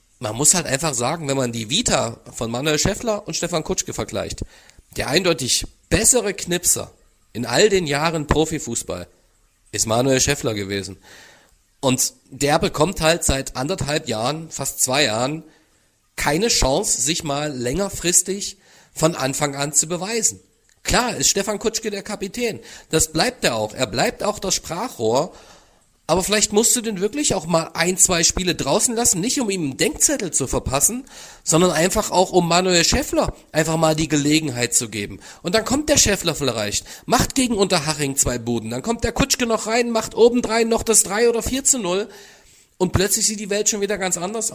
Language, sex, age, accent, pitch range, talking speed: German, male, 40-59, German, 130-200 Hz, 175 wpm